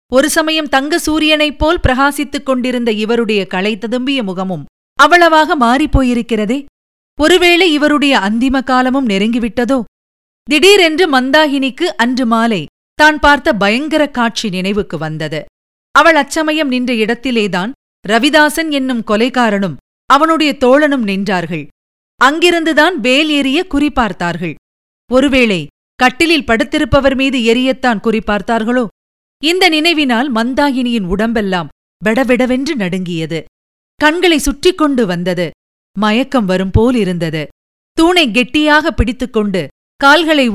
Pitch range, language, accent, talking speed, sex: 210-300 Hz, Tamil, native, 95 wpm, female